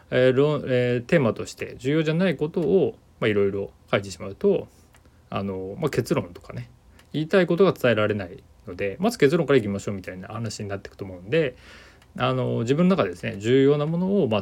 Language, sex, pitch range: Japanese, male, 100-135 Hz